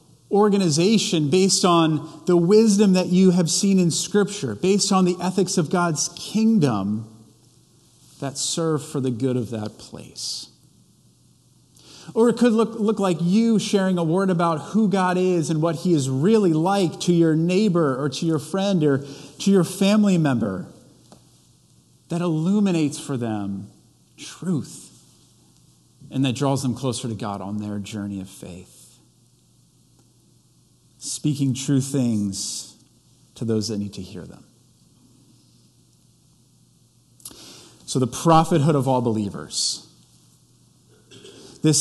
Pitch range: 120-180 Hz